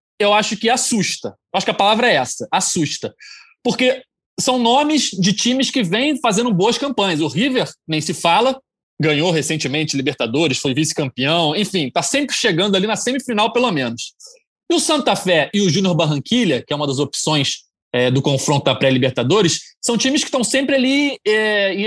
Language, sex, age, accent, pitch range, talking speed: Portuguese, male, 20-39, Brazilian, 170-250 Hz, 175 wpm